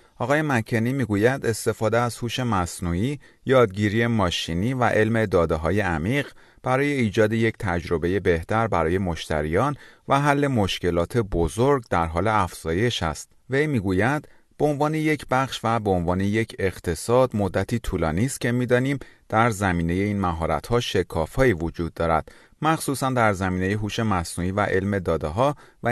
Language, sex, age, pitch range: Persian, male, 30-49, 90-125 Hz